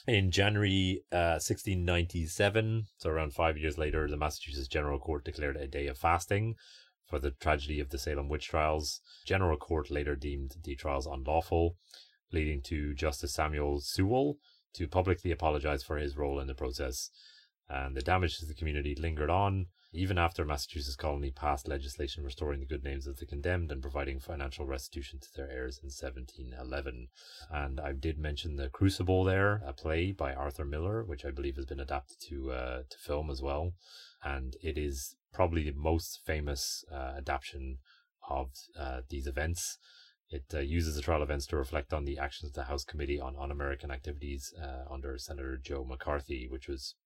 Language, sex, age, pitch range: English, male, 30-49, 70-85 Hz